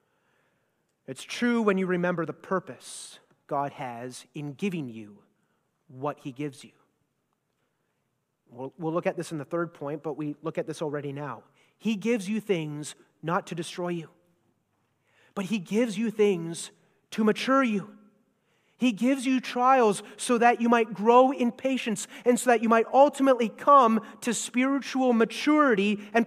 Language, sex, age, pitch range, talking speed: English, male, 30-49, 170-260 Hz, 160 wpm